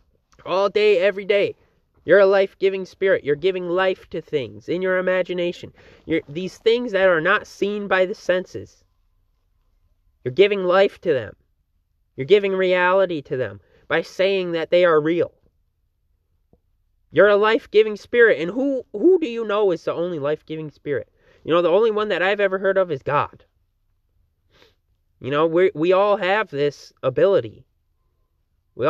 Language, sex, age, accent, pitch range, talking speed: English, male, 20-39, American, 120-190 Hz, 160 wpm